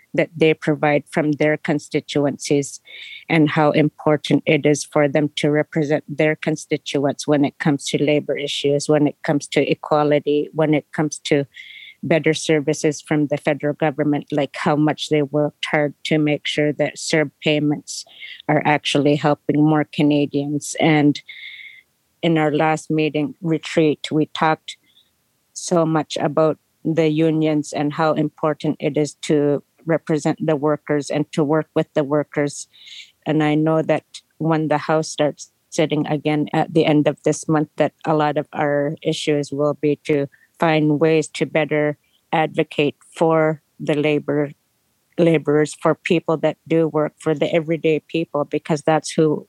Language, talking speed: English, 155 wpm